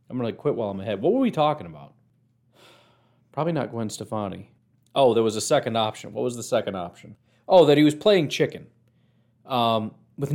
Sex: male